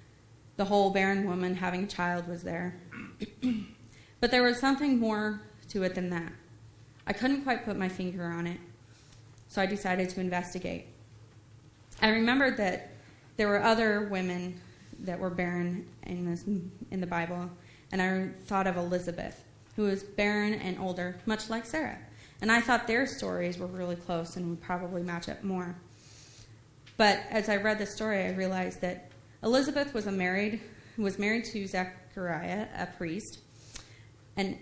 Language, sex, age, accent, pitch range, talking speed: English, female, 20-39, American, 170-205 Hz, 160 wpm